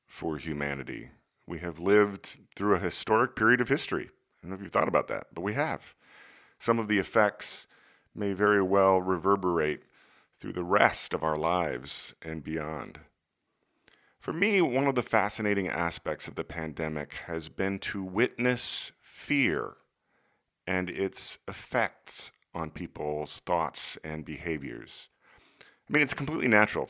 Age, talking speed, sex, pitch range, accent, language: 40-59, 145 wpm, male, 80-105 Hz, American, English